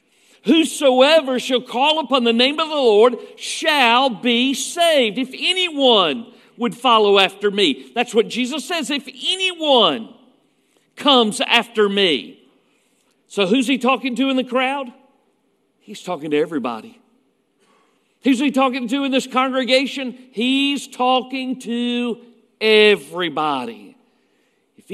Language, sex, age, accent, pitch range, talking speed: English, male, 50-69, American, 210-270 Hz, 125 wpm